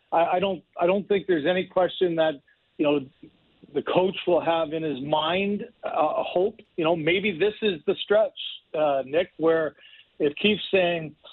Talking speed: 185 wpm